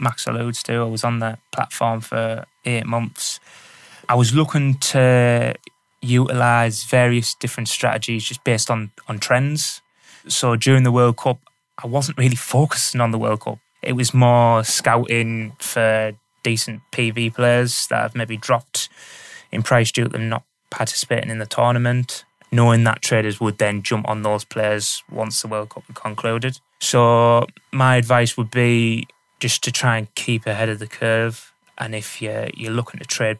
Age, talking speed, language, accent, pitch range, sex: 20-39, 170 wpm, English, British, 110-125 Hz, male